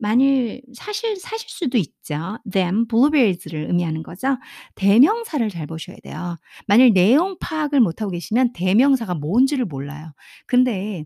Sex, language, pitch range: female, Korean, 175-265 Hz